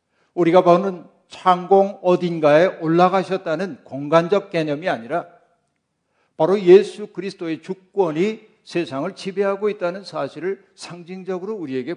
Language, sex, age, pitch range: Korean, male, 60-79, 155-185 Hz